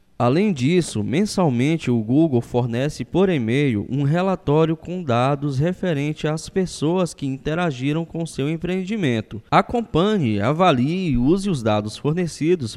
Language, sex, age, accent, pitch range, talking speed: Portuguese, male, 20-39, Brazilian, 125-175 Hz, 125 wpm